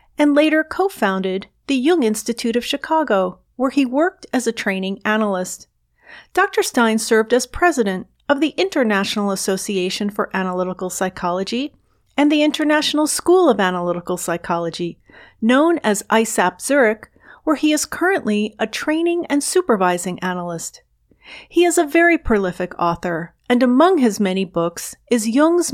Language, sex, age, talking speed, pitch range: English, female, 40-59, 140 wpm, 190-290 Hz